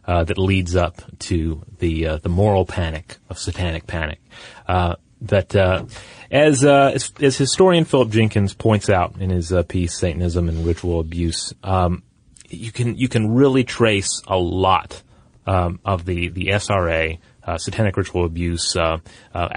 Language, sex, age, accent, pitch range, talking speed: English, male, 30-49, American, 90-110 Hz, 165 wpm